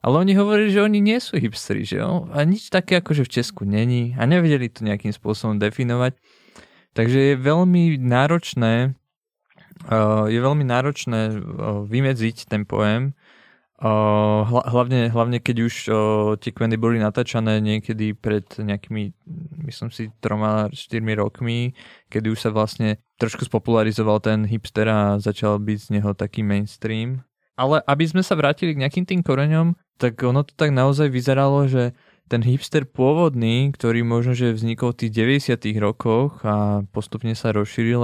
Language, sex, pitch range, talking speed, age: Czech, male, 110-135 Hz, 160 wpm, 20-39